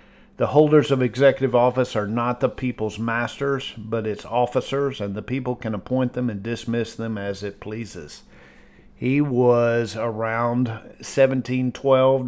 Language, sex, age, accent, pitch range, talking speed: English, male, 50-69, American, 115-130 Hz, 140 wpm